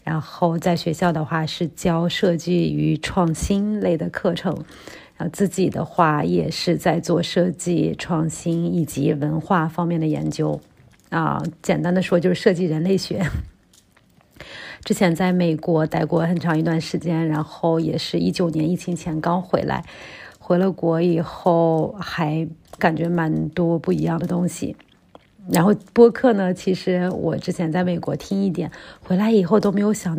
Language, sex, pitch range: Chinese, female, 165-185 Hz